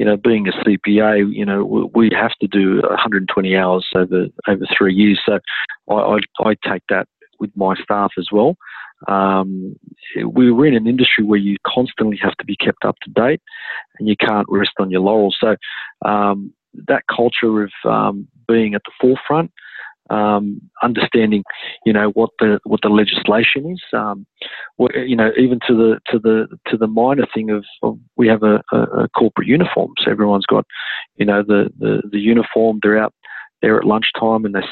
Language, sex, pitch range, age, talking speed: English, male, 100-115 Hz, 40-59, 190 wpm